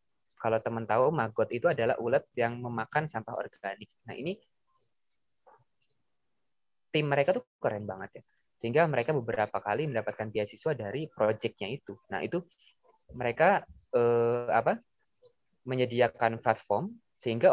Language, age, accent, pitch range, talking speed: Indonesian, 20-39, native, 105-145 Hz, 125 wpm